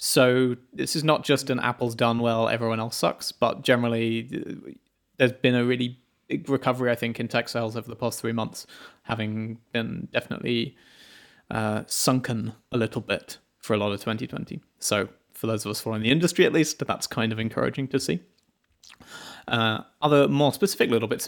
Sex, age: male, 30-49